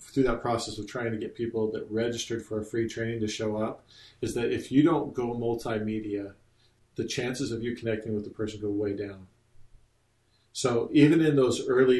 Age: 40-59